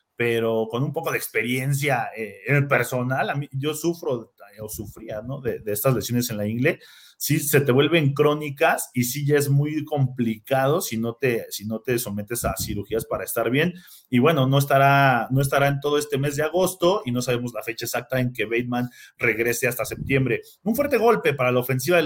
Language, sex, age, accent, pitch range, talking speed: Spanish, male, 30-49, Mexican, 120-145 Hz, 210 wpm